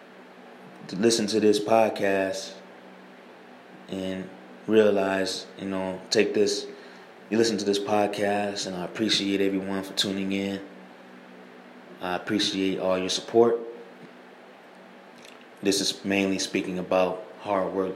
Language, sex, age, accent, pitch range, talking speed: English, male, 20-39, American, 65-100 Hz, 115 wpm